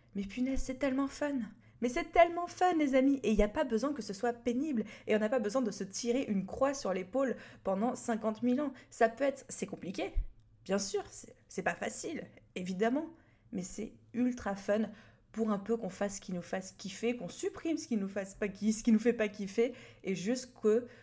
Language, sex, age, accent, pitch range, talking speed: French, female, 20-39, French, 185-240 Hz, 225 wpm